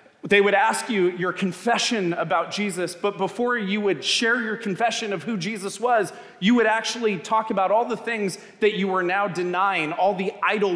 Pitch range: 170-215 Hz